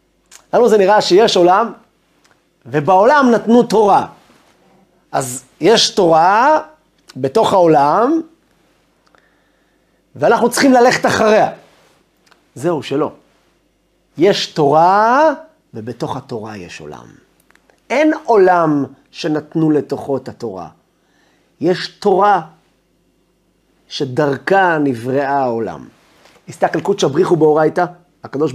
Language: Hebrew